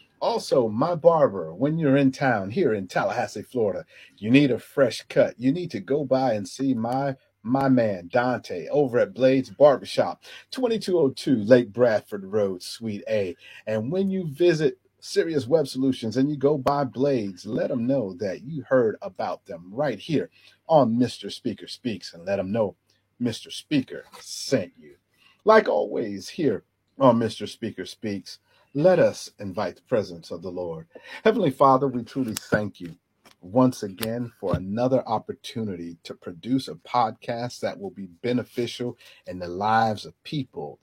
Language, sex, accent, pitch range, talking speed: English, male, American, 105-135 Hz, 160 wpm